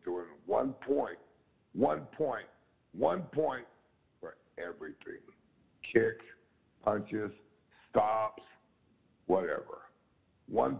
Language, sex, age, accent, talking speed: English, male, 60-79, American, 80 wpm